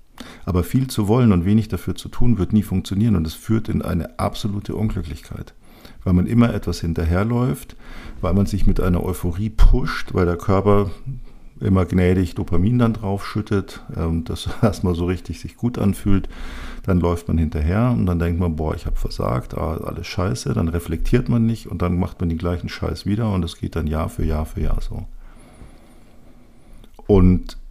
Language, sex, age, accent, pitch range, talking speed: German, male, 50-69, German, 85-105 Hz, 180 wpm